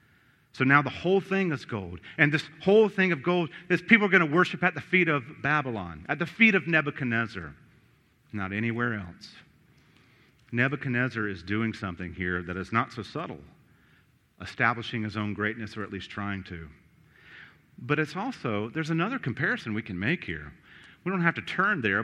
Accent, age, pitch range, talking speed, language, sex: American, 40-59, 115-190 Hz, 180 wpm, English, male